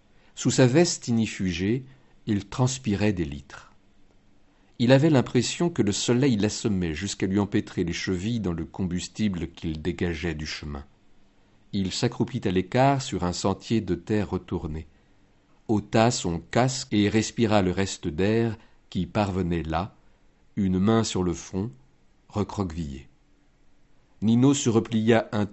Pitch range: 90-115 Hz